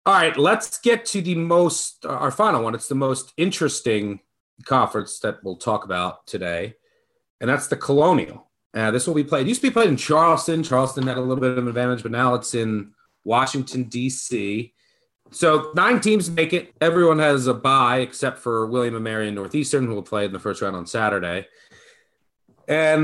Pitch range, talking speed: 120-175 Hz, 200 wpm